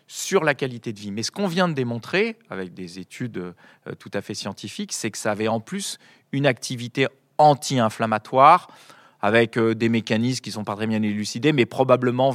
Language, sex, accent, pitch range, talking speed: French, male, French, 110-140 Hz, 190 wpm